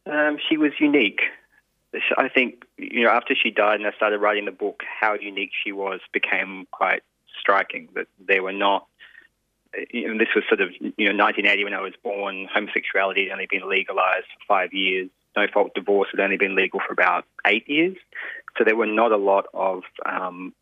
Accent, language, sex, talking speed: Australian, English, male, 195 wpm